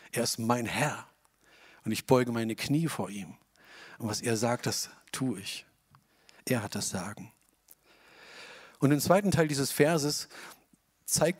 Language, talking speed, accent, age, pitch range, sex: German, 155 wpm, German, 40-59, 115-140 Hz, male